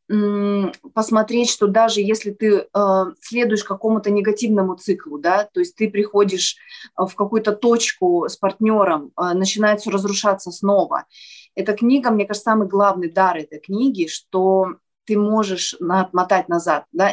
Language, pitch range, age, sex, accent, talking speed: Russian, 175-220 Hz, 20-39, female, native, 135 wpm